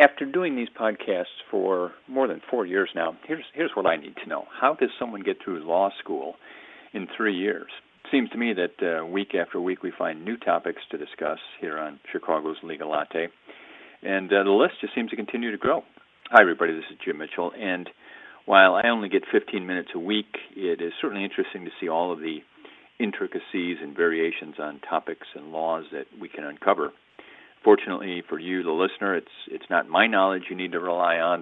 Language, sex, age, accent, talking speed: English, male, 50-69, American, 205 wpm